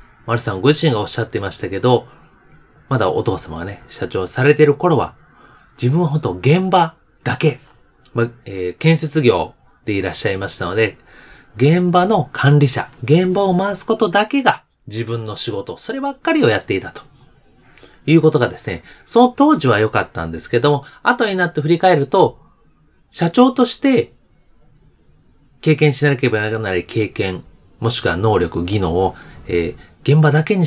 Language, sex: Japanese, male